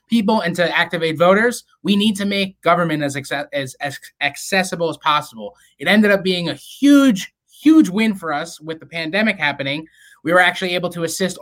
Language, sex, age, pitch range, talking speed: English, male, 20-39, 155-195 Hz, 195 wpm